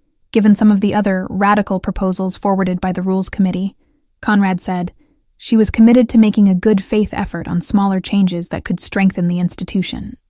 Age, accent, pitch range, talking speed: 10-29, American, 185-220 Hz, 175 wpm